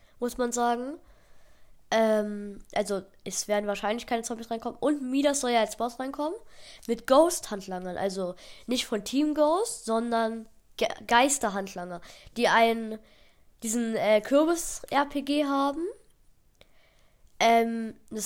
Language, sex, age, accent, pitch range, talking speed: German, female, 10-29, German, 220-275 Hz, 130 wpm